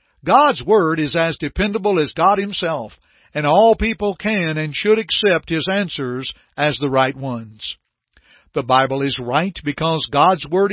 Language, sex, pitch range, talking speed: English, male, 145-195 Hz, 155 wpm